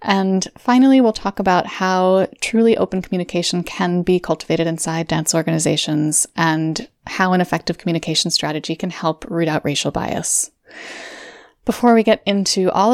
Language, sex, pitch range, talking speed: English, female, 165-200 Hz, 150 wpm